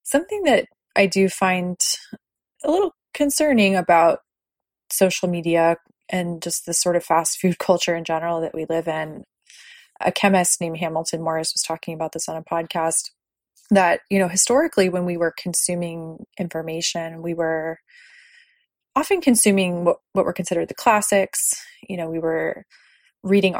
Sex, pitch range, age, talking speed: female, 165-200 Hz, 20-39, 155 wpm